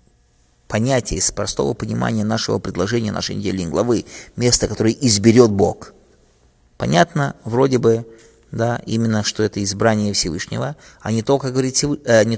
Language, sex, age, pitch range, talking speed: English, male, 20-39, 100-120 Hz, 135 wpm